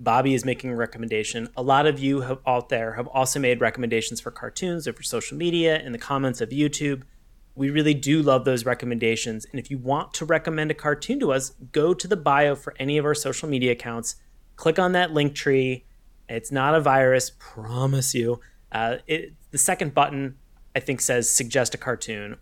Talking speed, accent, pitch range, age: 200 wpm, American, 120-155 Hz, 30-49